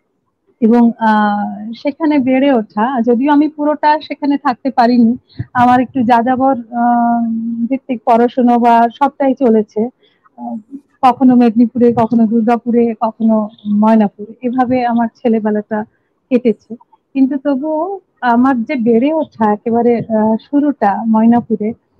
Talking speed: 80 wpm